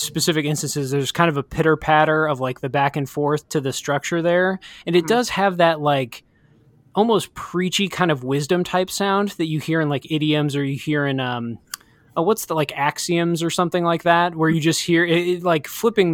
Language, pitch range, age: English, 140-170 Hz, 20-39